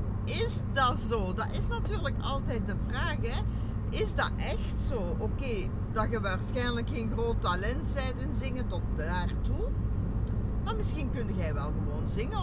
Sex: female